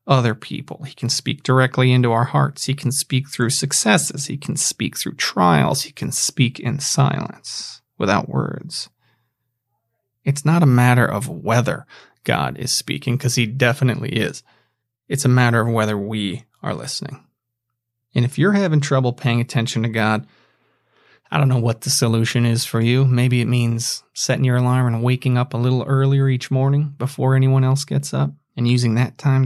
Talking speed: 180 wpm